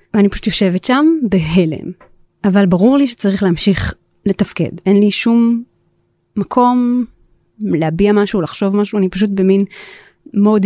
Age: 30-49